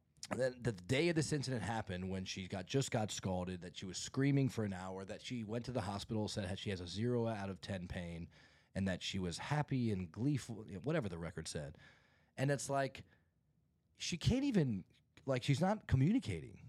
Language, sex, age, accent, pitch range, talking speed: English, male, 30-49, American, 95-125 Hz, 205 wpm